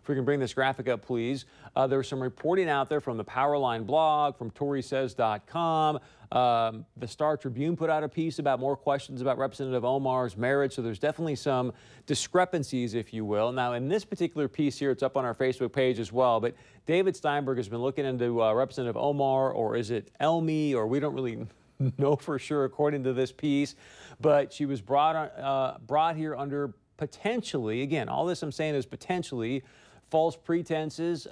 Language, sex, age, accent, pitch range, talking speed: English, male, 40-59, American, 125-150 Hz, 190 wpm